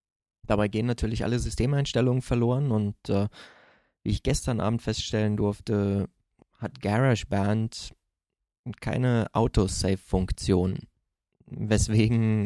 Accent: German